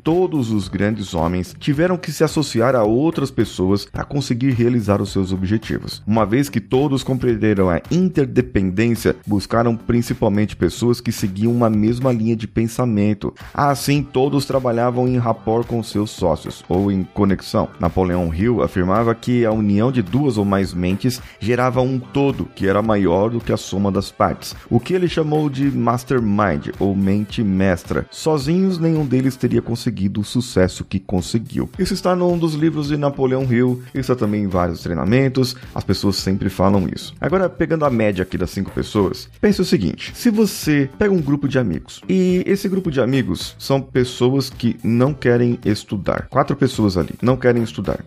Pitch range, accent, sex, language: 100-135 Hz, Brazilian, male, Portuguese